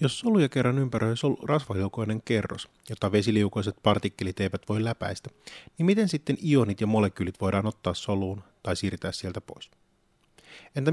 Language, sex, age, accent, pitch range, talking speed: Finnish, male, 30-49, native, 95-125 Hz, 145 wpm